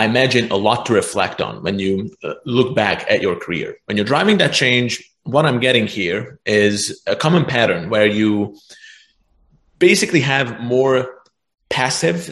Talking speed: 160 wpm